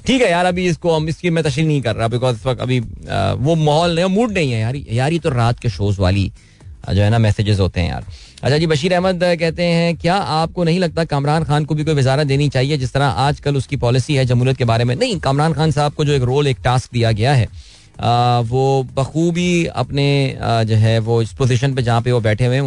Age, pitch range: 20-39, 115-145 Hz